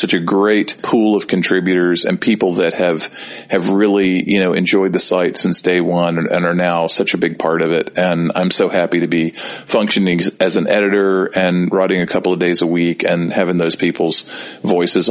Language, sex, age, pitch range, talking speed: English, male, 40-59, 85-100 Hz, 210 wpm